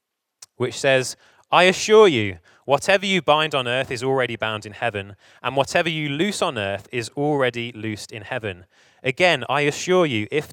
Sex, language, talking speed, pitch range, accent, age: male, English, 175 wpm, 105-140 Hz, British, 20-39